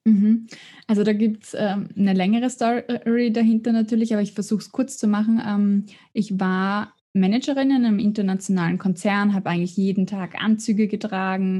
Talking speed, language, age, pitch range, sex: 155 wpm, German, 20-39, 190-225 Hz, female